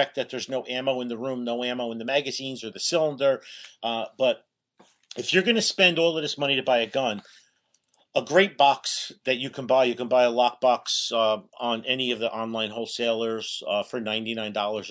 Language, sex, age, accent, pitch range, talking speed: English, male, 40-59, American, 110-130 Hz, 215 wpm